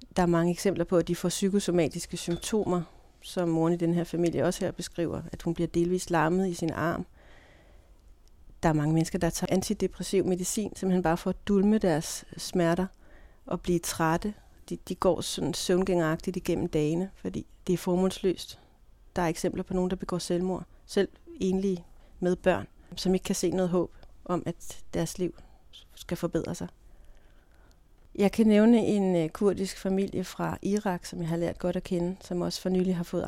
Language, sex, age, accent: Danish, female, 40-59, native